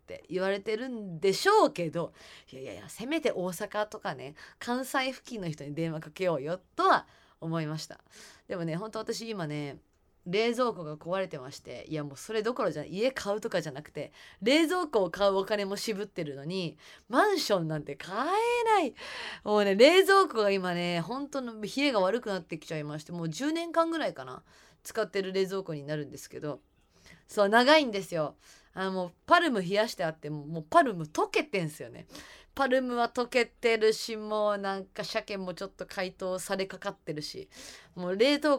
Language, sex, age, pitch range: Japanese, female, 20-39, 165-240 Hz